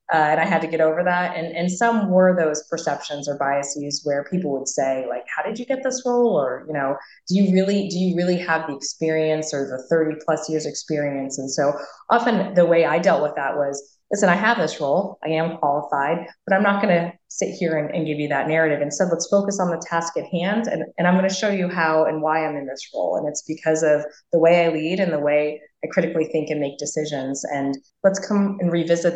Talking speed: 245 wpm